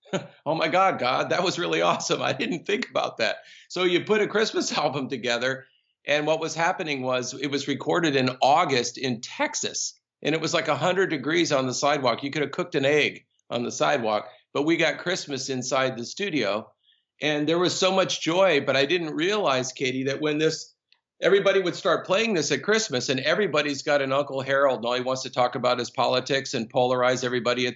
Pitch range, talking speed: 130-165 Hz, 210 wpm